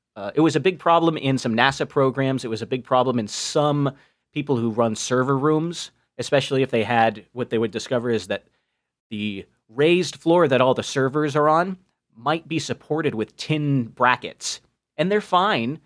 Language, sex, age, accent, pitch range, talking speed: English, male, 30-49, American, 115-150 Hz, 190 wpm